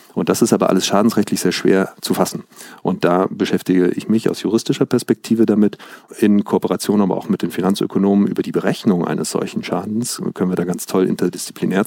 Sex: male